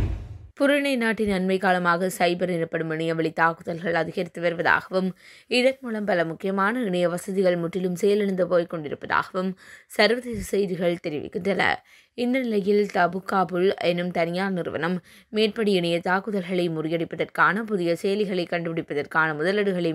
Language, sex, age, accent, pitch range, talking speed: English, female, 20-39, Indian, 170-205 Hz, 95 wpm